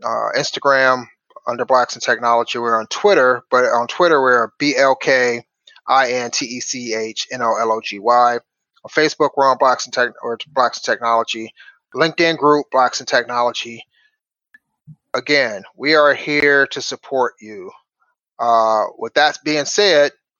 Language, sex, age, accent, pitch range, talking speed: English, male, 30-49, American, 120-165 Hz, 155 wpm